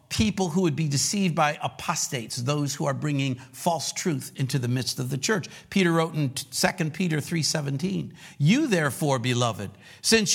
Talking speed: 170 wpm